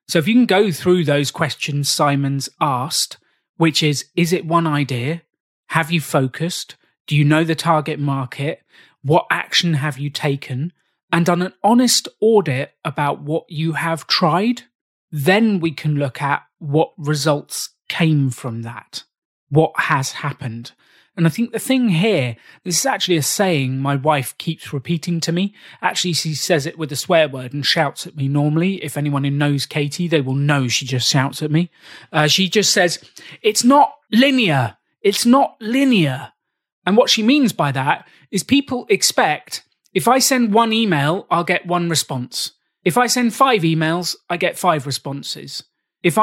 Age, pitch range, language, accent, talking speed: 30-49, 145-195 Hz, English, British, 175 wpm